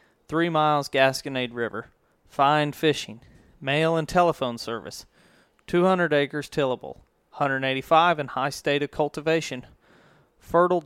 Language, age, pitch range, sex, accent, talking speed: English, 30-49, 135-160 Hz, male, American, 110 wpm